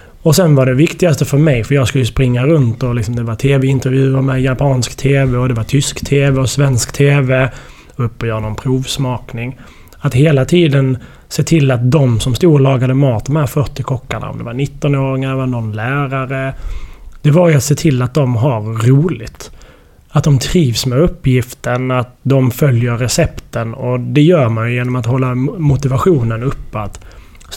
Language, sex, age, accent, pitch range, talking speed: Swedish, male, 20-39, native, 120-140 Hz, 190 wpm